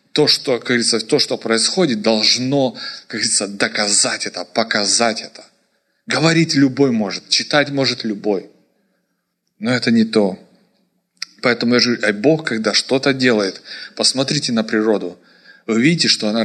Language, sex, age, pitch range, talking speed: English, male, 20-39, 105-140 Hz, 140 wpm